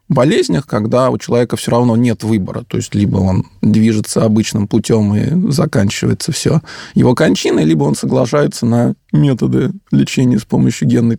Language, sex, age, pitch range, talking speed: Russian, male, 20-39, 110-140 Hz, 155 wpm